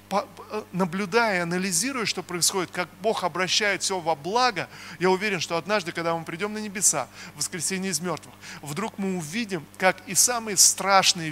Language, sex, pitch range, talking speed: Russian, male, 175-210 Hz, 160 wpm